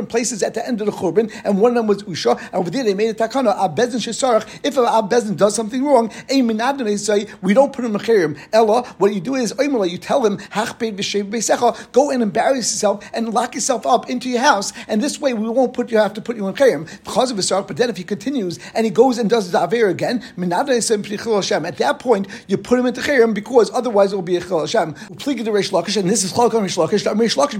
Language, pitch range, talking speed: English, 205-245 Hz, 210 wpm